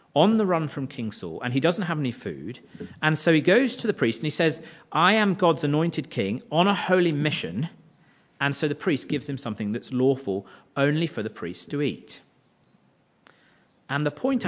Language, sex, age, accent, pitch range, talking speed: English, male, 40-59, British, 125-175 Hz, 205 wpm